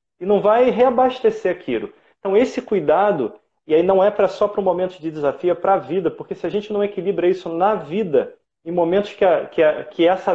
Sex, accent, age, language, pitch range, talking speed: male, Brazilian, 30-49, Portuguese, 155-225 Hz, 225 wpm